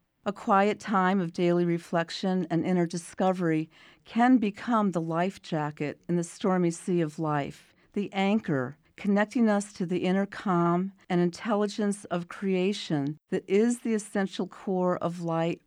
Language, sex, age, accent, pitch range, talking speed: English, female, 50-69, American, 170-200 Hz, 150 wpm